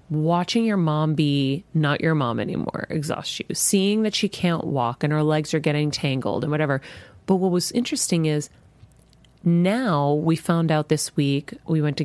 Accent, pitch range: American, 145-170 Hz